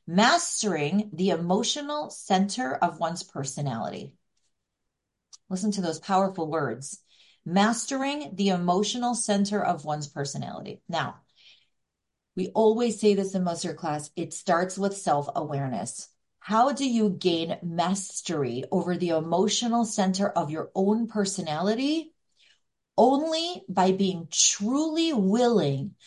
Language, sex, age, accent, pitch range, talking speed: English, female, 40-59, American, 175-230 Hz, 115 wpm